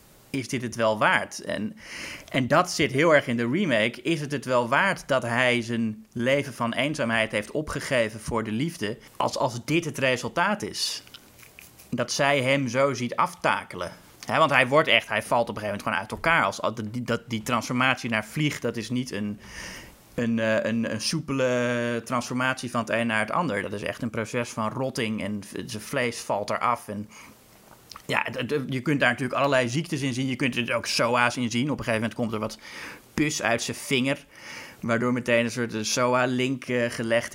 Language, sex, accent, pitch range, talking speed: Dutch, male, Dutch, 115-135 Hz, 200 wpm